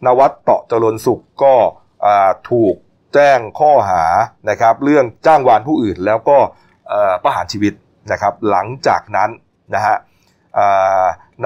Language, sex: Thai, male